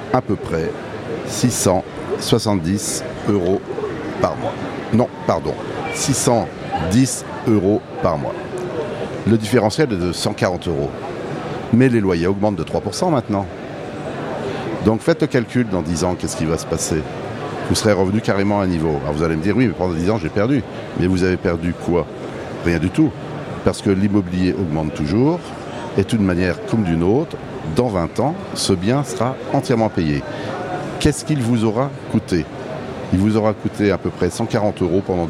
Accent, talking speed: French, 170 wpm